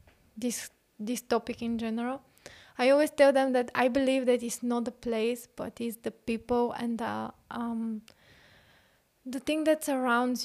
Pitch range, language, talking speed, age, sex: 235-265 Hz, English, 155 wpm, 20-39, female